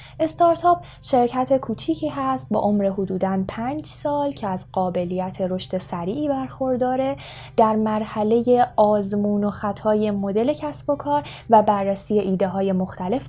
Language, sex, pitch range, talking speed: Persian, female, 195-290 Hz, 130 wpm